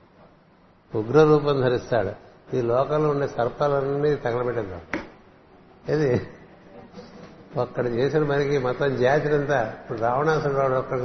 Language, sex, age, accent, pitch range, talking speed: Telugu, male, 60-79, native, 130-150 Hz, 85 wpm